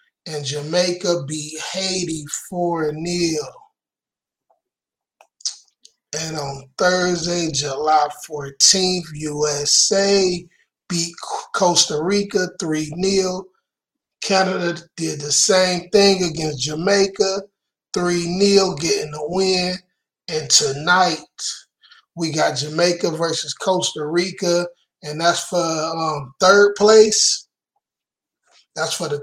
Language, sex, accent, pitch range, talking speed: English, male, American, 155-185 Hz, 90 wpm